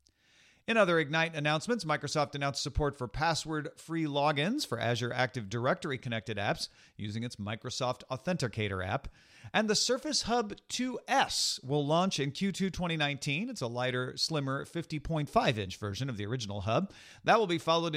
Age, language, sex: 40-59, English, male